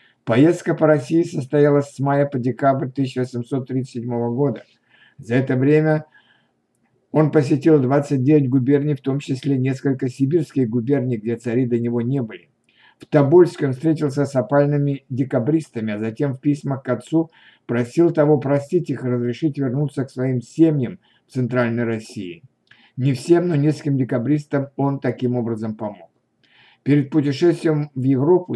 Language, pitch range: Russian, 125-150 Hz